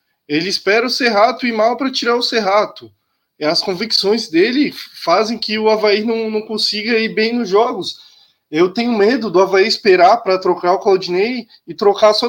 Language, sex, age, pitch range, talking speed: Portuguese, male, 20-39, 180-235 Hz, 180 wpm